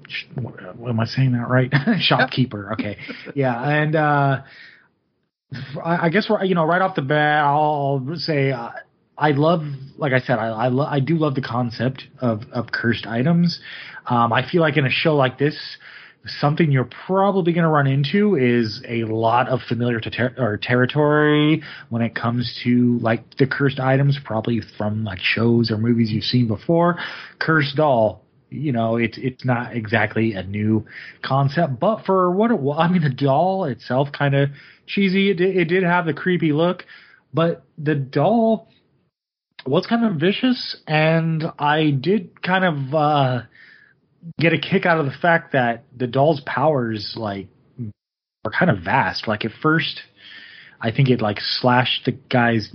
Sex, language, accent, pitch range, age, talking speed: male, English, American, 120-160 Hz, 30-49, 175 wpm